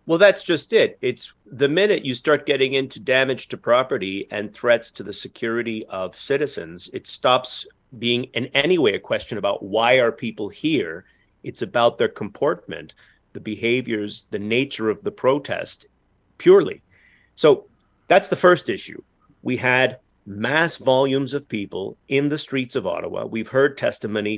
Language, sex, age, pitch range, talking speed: English, male, 30-49, 100-135 Hz, 160 wpm